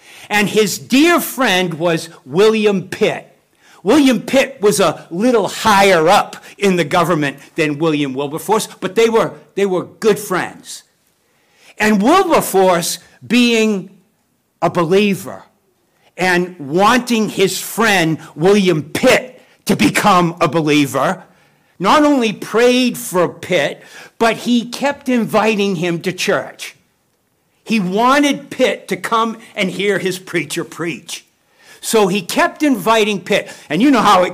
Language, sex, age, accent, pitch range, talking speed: English, male, 60-79, American, 170-230 Hz, 130 wpm